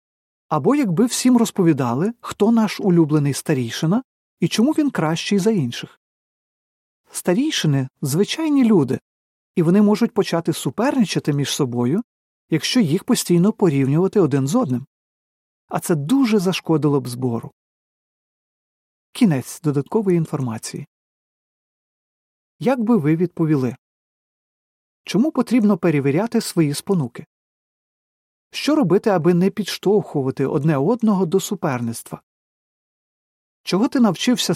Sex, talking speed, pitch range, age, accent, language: male, 105 wpm, 145-220 Hz, 40-59, native, Ukrainian